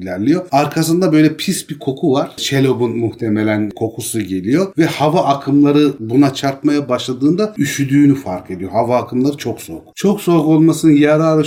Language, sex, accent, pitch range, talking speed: Turkish, male, native, 115-150 Hz, 145 wpm